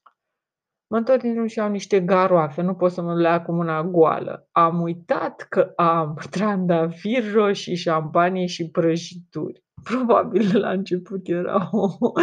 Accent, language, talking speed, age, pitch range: native, Romanian, 140 wpm, 20-39, 175-230 Hz